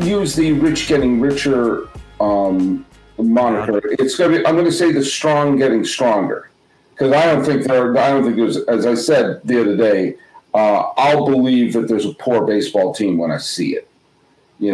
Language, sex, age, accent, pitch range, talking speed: English, male, 50-69, American, 115-155 Hz, 185 wpm